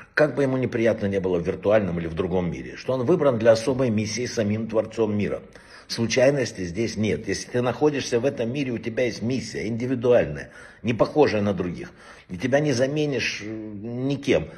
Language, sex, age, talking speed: Russian, male, 60-79, 185 wpm